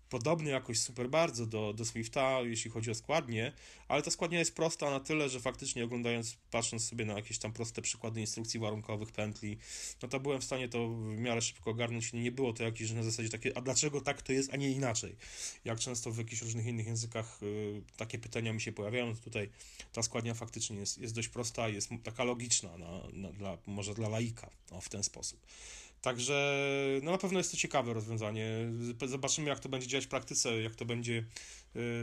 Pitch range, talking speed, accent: 110-130 Hz, 205 wpm, native